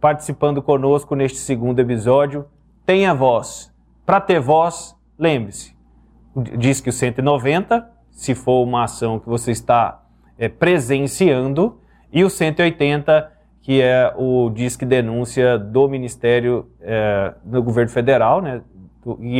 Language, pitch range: Portuguese, 120-145 Hz